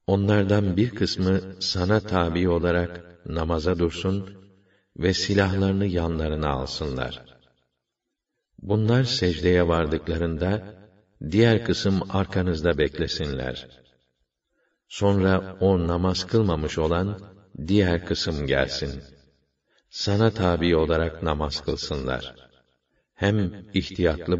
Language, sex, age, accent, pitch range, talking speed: Turkish, male, 60-79, native, 80-95 Hz, 85 wpm